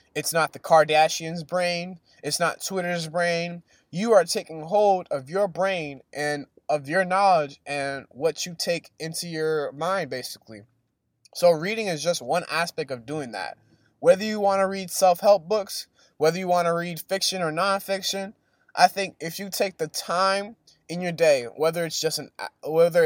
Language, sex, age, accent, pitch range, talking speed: English, male, 20-39, American, 150-195 Hz, 175 wpm